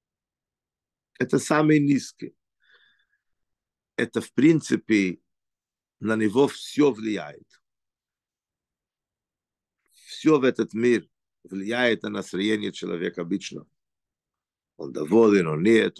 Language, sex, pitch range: Russian, male, 105-150 Hz